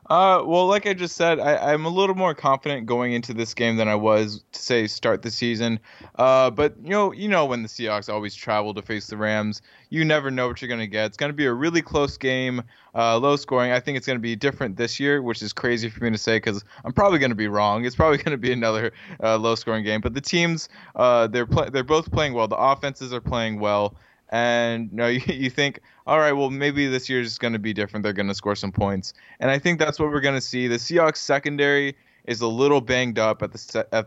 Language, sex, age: English, male, 20-39